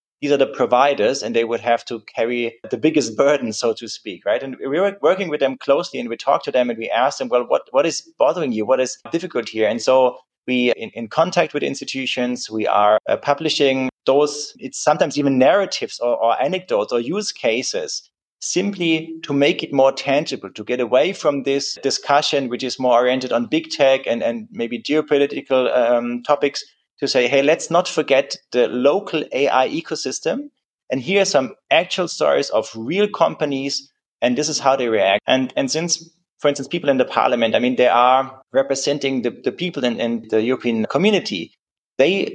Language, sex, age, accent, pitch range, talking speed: English, male, 30-49, German, 125-160 Hz, 195 wpm